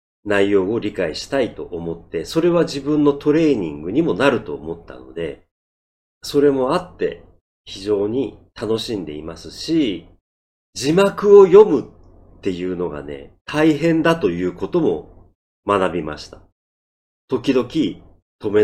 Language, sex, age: Japanese, male, 40-59